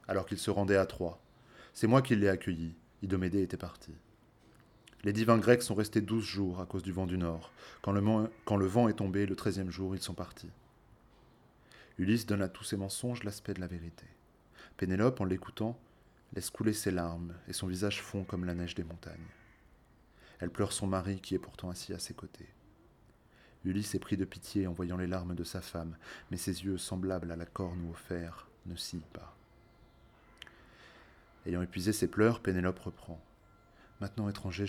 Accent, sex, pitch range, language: French, male, 85-105 Hz, French